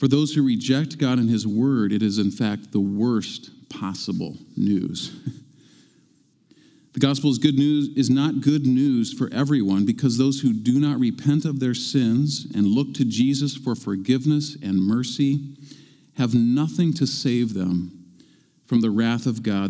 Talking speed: 160 wpm